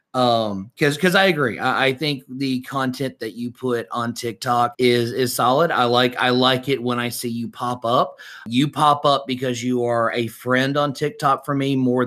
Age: 30-49